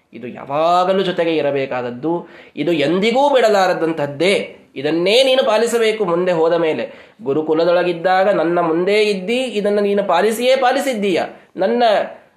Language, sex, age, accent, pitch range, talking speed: Kannada, male, 20-39, native, 145-220 Hz, 105 wpm